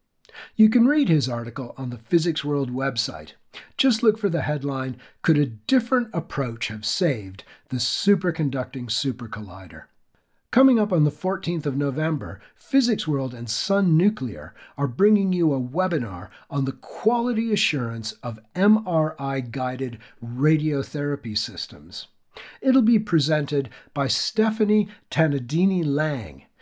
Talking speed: 125 wpm